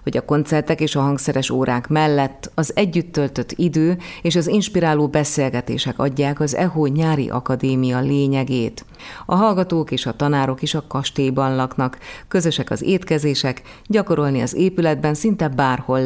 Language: Hungarian